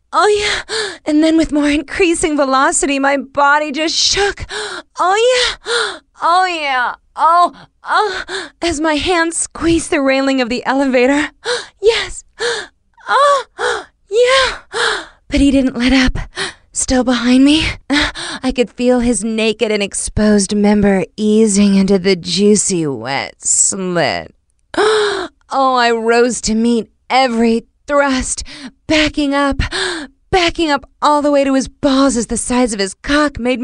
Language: English